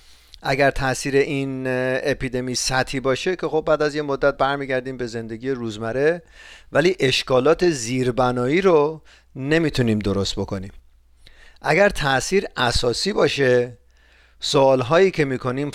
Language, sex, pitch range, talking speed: Persian, male, 115-145 Hz, 115 wpm